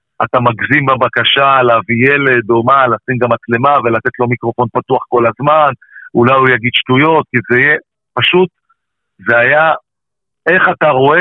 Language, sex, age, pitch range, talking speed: Hebrew, male, 50-69, 130-175 Hz, 155 wpm